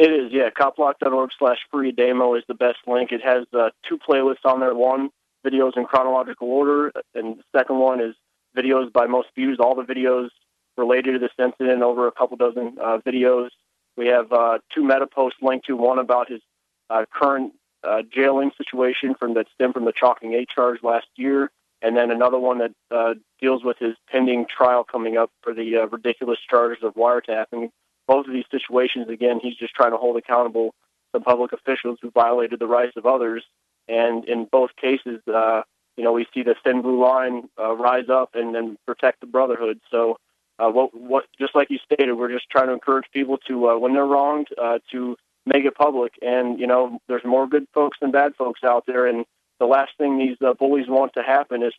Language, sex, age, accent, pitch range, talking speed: English, male, 30-49, American, 120-130 Hz, 205 wpm